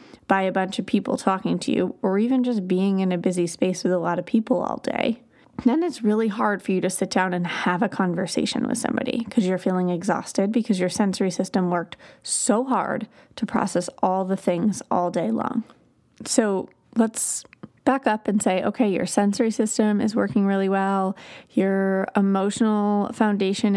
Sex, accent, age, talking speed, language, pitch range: female, American, 30-49, 185 wpm, English, 195-250 Hz